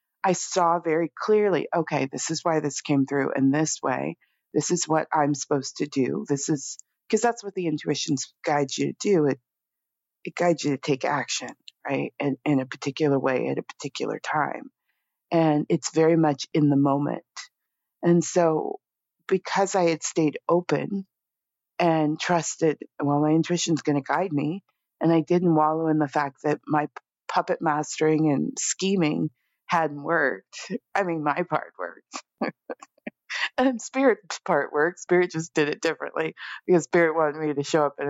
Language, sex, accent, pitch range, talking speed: English, female, American, 145-175 Hz, 175 wpm